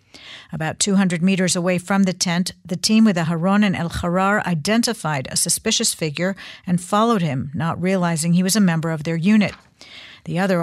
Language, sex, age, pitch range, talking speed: English, female, 50-69, 165-195 Hz, 175 wpm